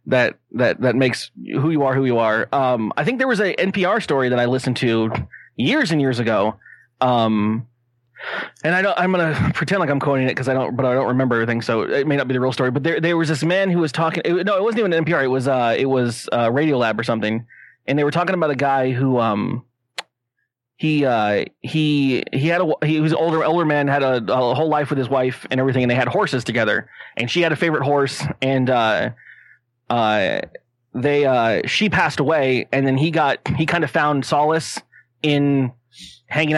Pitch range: 125-150 Hz